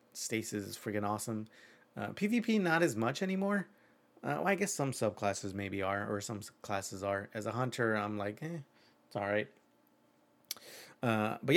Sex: male